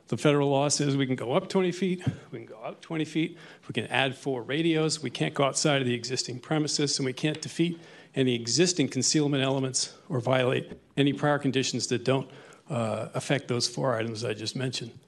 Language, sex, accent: English, male, American